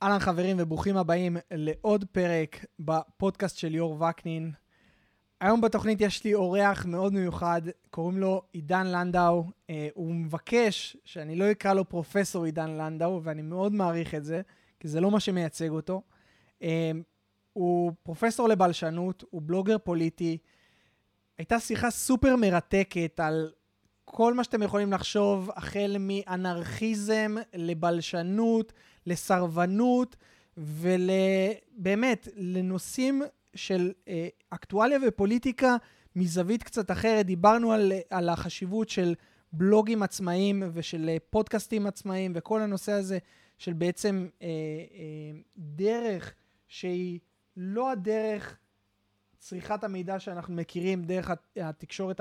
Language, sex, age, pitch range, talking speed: Hebrew, male, 20-39, 165-205 Hz, 115 wpm